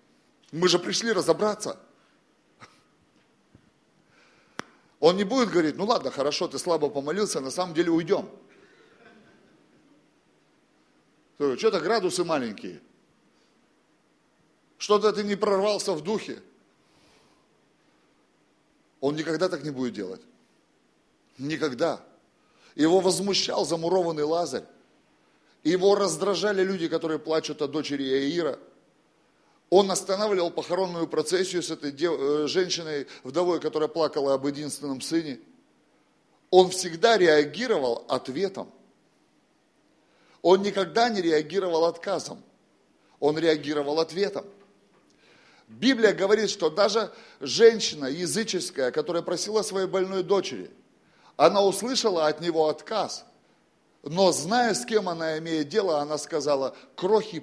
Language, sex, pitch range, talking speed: Russian, male, 155-200 Hz, 100 wpm